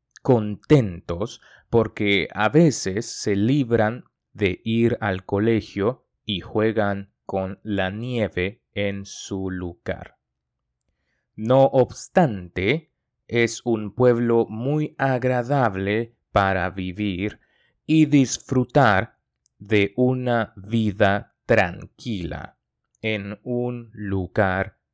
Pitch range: 100-135 Hz